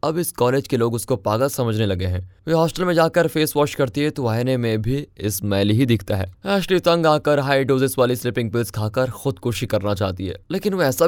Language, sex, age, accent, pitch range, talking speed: Hindi, male, 20-39, native, 110-165 Hz, 70 wpm